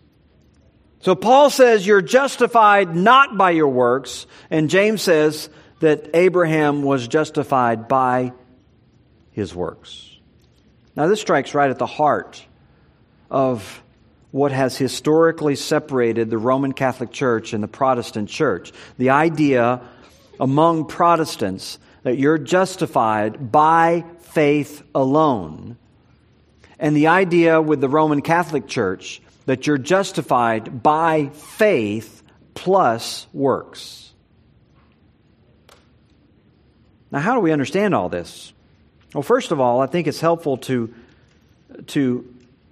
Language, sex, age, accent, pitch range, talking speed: English, male, 50-69, American, 125-165 Hz, 115 wpm